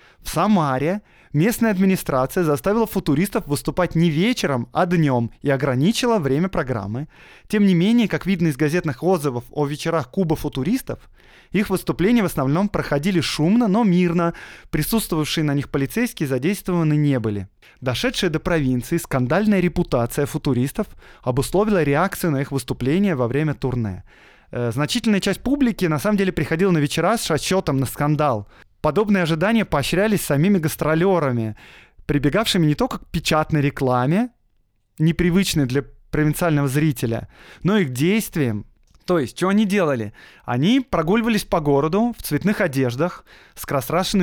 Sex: male